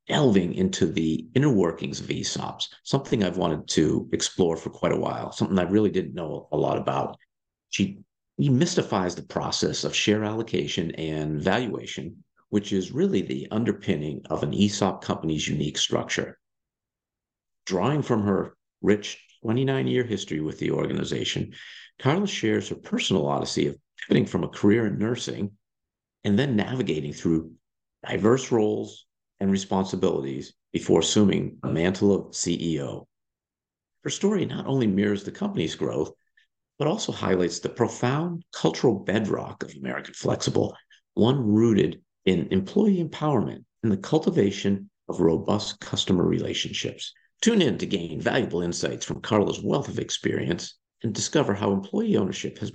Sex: male